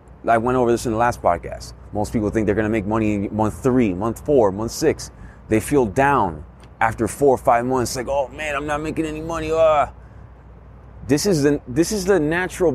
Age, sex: 30-49, male